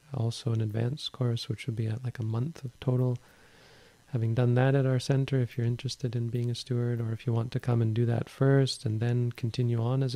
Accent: American